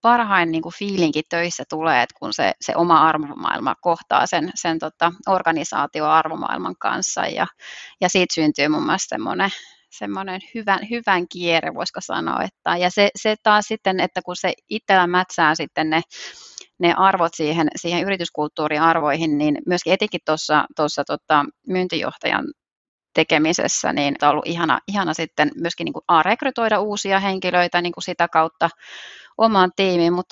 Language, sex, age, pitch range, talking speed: Finnish, female, 30-49, 160-190 Hz, 145 wpm